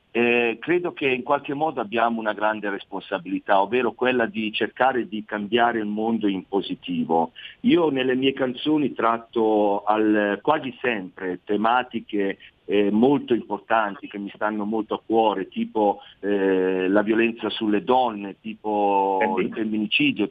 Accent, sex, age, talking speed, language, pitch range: native, male, 50-69, 140 wpm, Italian, 105-125 Hz